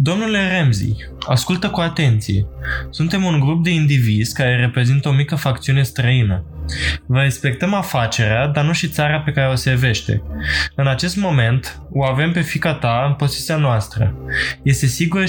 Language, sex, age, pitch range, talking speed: Romanian, male, 20-39, 125-160 Hz, 160 wpm